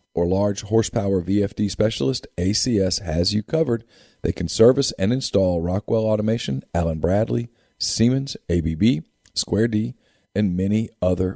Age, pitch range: 40-59, 90-115 Hz